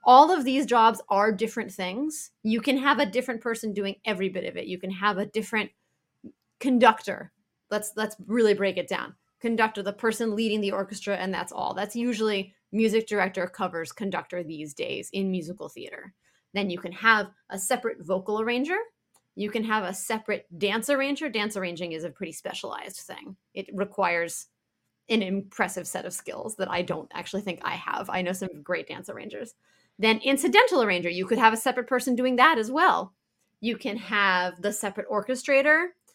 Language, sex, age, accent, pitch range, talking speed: English, female, 30-49, American, 190-240 Hz, 185 wpm